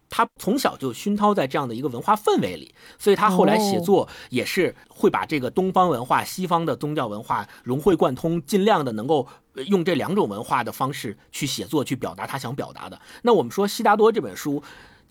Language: Chinese